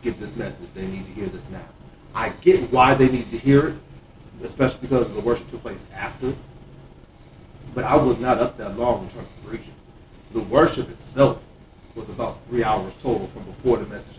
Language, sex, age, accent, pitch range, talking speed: English, male, 30-49, American, 110-150 Hz, 200 wpm